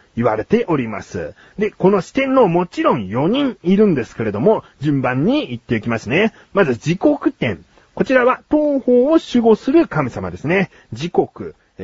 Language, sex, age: Japanese, male, 40-59